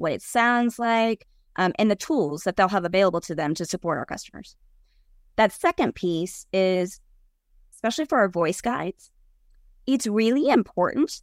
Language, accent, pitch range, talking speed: English, American, 190-270 Hz, 160 wpm